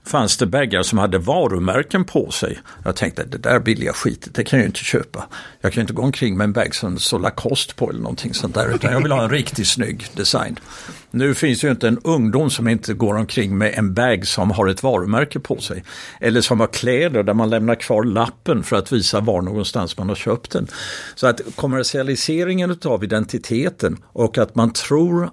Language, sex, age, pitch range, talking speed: Swedish, male, 60-79, 100-130 Hz, 215 wpm